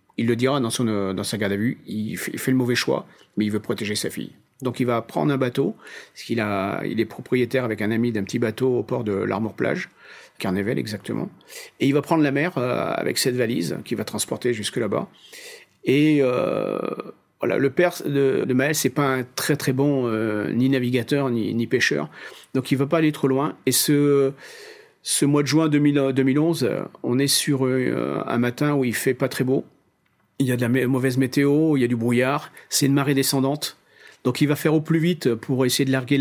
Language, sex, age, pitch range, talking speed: French, male, 40-59, 125-145 Hz, 230 wpm